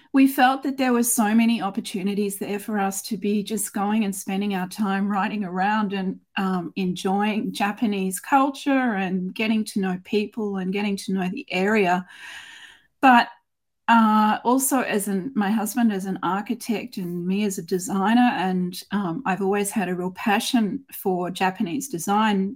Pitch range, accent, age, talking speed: 195-245 Hz, Australian, 40-59, 165 wpm